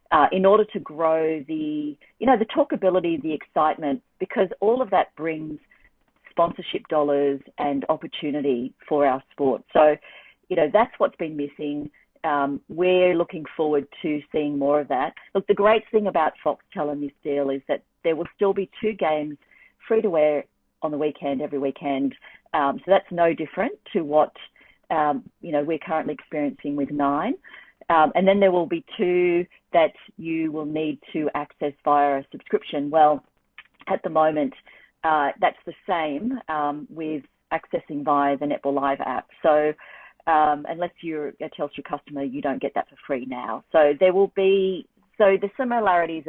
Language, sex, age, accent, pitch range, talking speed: English, female, 40-59, Australian, 145-190 Hz, 170 wpm